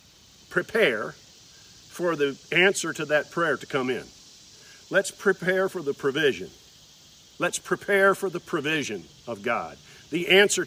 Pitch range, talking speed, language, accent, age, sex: 125-185 Hz, 135 wpm, English, American, 50-69, male